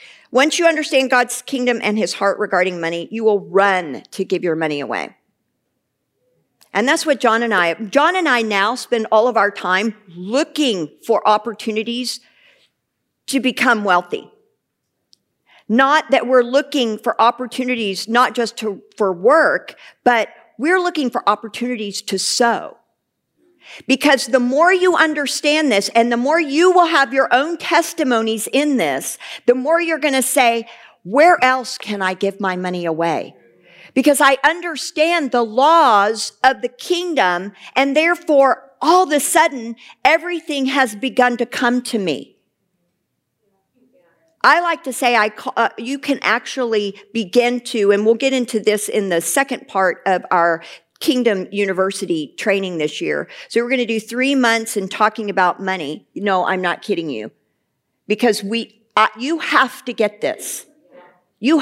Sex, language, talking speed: female, English, 160 wpm